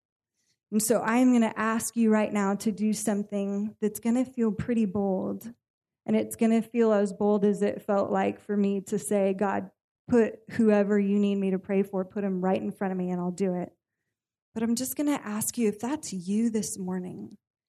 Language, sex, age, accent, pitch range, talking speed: English, female, 20-39, American, 195-225 Hz, 215 wpm